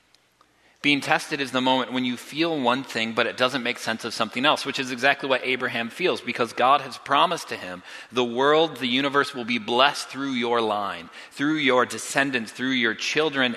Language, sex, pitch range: English, male, 110-135 Hz